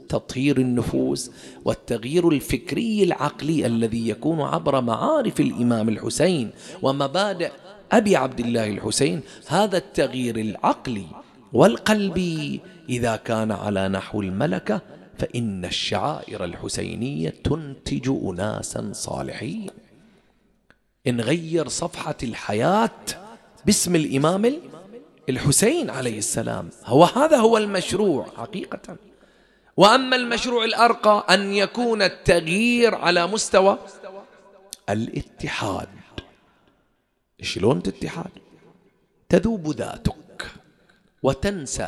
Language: English